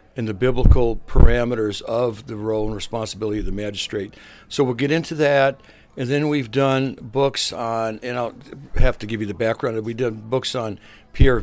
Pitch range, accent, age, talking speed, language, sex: 105-130 Hz, American, 60-79, 190 wpm, English, male